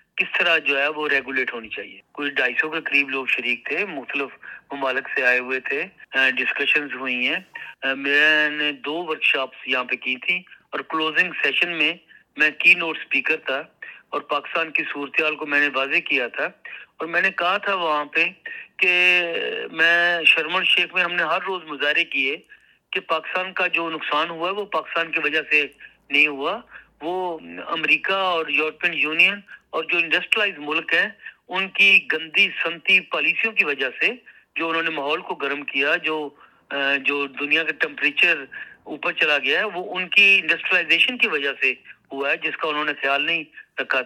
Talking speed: 145 wpm